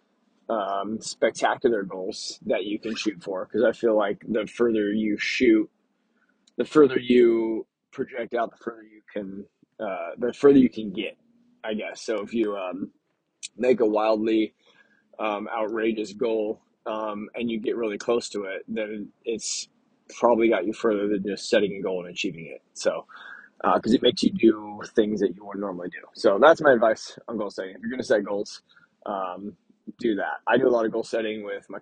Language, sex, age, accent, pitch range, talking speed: English, male, 20-39, American, 105-120 Hz, 190 wpm